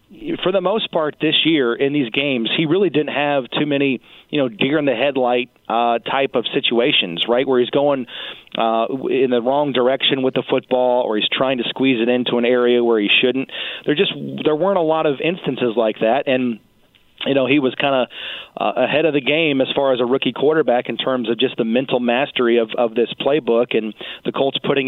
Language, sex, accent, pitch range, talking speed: English, male, American, 115-135 Hz, 220 wpm